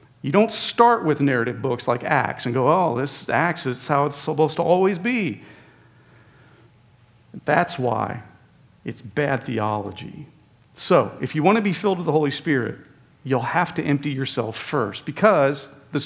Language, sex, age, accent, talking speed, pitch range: English, male, 40-59, American, 165 wpm, 130-175 Hz